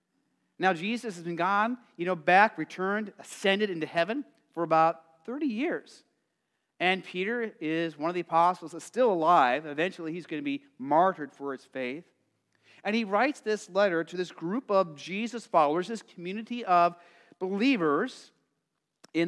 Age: 40-59